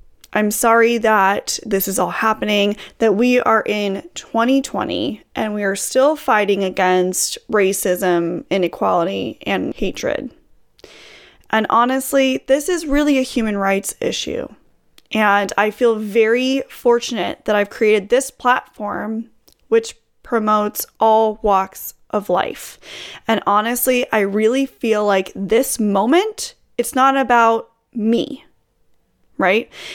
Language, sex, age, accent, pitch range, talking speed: English, female, 20-39, American, 205-255 Hz, 120 wpm